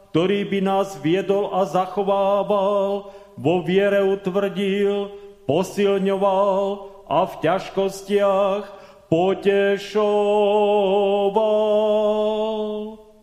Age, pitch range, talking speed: 40-59, 175-200 Hz, 65 wpm